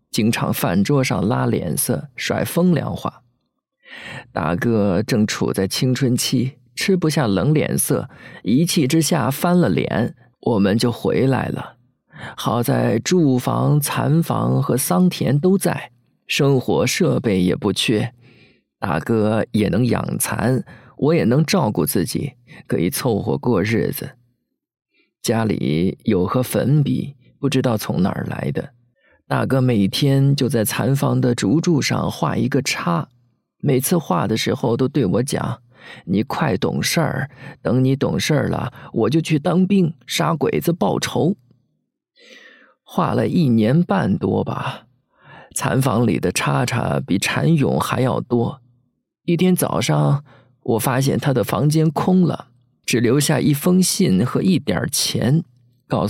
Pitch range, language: 120-160 Hz, Chinese